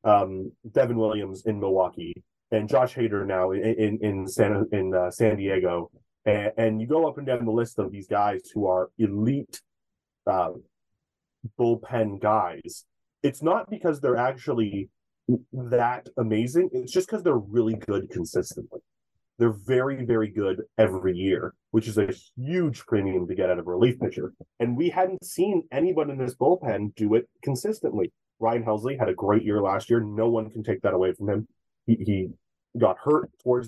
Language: English